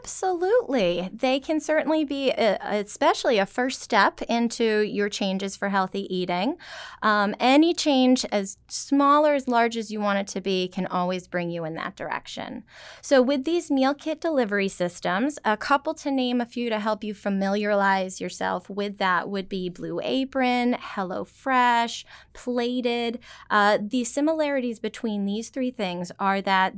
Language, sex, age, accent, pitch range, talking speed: English, female, 20-39, American, 190-245 Hz, 165 wpm